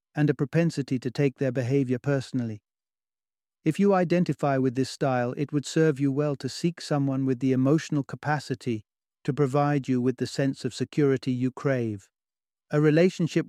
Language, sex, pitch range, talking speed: English, male, 125-150 Hz, 170 wpm